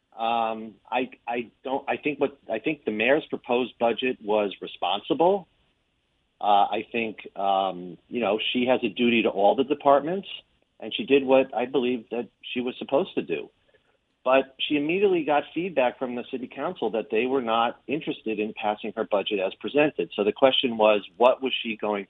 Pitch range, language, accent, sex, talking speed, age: 105-130 Hz, English, American, male, 185 wpm, 40-59